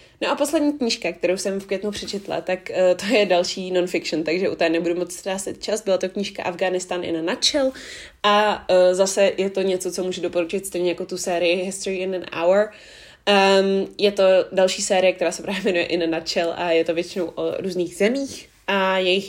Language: Czech